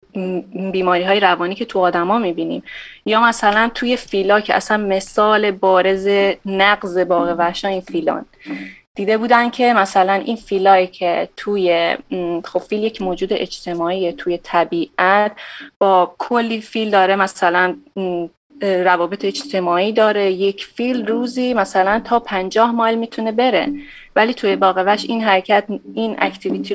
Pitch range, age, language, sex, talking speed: 185-220 Hz, 30-49, English, female, 140 wpm